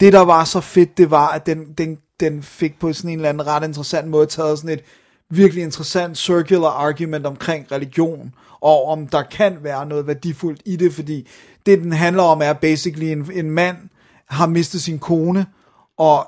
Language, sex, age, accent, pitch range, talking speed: Danish, male, 30-49, native, 145-175 Hz, 200 wpm